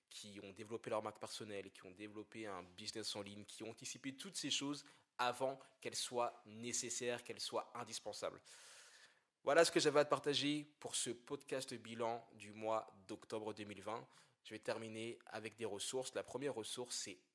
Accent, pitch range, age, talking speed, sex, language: French, 105-130 Hz, 20-39, 175 wpm, male, French